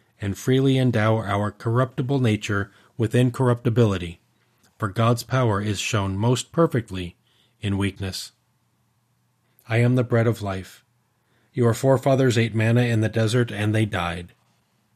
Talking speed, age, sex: 130 wpm, 40-59, male